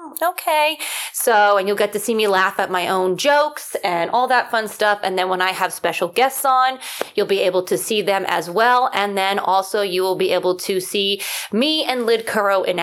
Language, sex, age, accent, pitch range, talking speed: English, female, 20-39, American, 185-225 Hz, 225 wpm